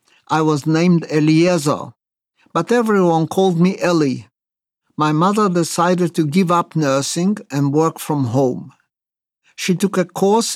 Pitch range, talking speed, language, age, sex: 145-180 Hz, 135 wpm, English, 60-79, male